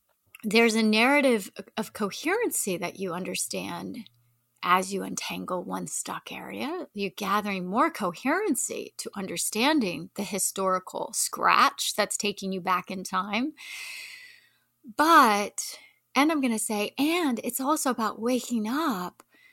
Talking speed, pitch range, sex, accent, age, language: 125 wpm, 185-255 Hz, female, American, 30-49, English